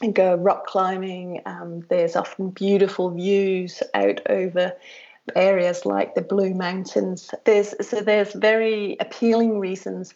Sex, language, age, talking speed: female, English, 30-49, 130 wpm